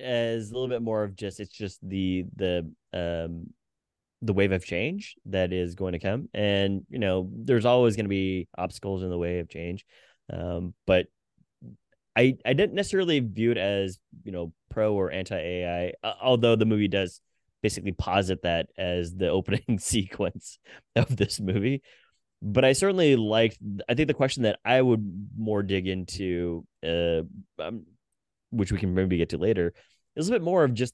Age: 20-39